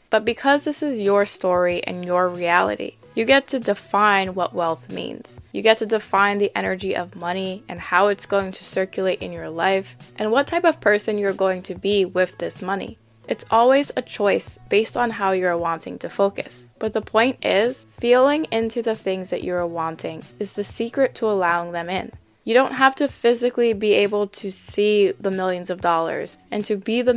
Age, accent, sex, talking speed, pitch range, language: 20-39, American, female, 200 wpm, 180-225 Hz, English